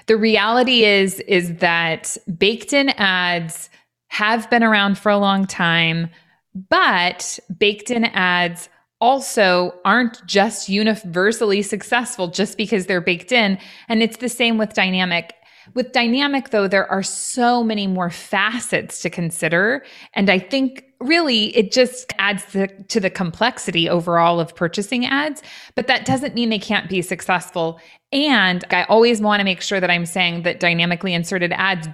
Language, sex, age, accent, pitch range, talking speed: English, female, 20-39, American, 175-220 Hz, 155 wpm